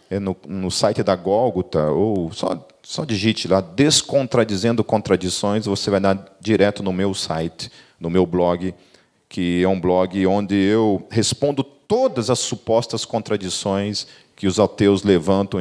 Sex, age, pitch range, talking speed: male, 40-59, 100-150 Hz, 145 wpm